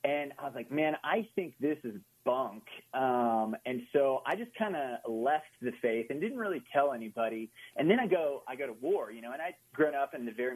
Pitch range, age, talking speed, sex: 115-140 Hz, 30-49, 240 wpm, male